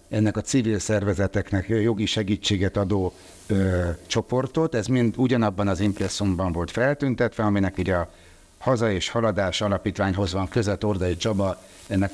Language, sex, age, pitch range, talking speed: Hungarian, male, 60-79, 95-120 Hz, 140 wpm